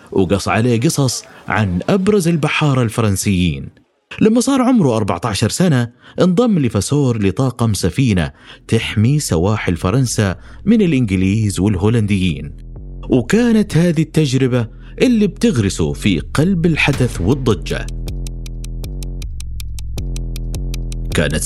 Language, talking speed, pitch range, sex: Arabic, 90 wpm, 100-145 Hz, male